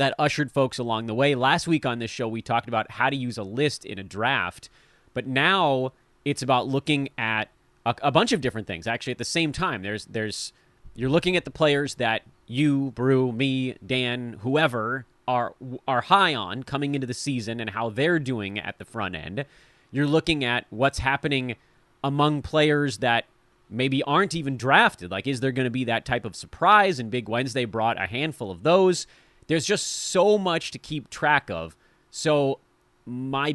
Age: 30-49